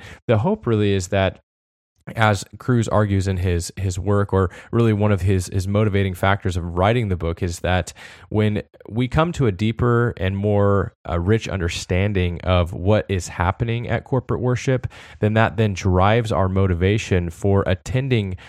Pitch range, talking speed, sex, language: 95-115 Hz, 170 wpm, male, English